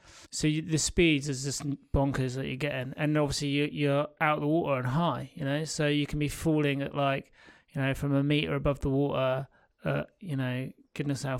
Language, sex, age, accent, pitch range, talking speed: English, male, 30-49, British, 130-150 Hz, 220 wpm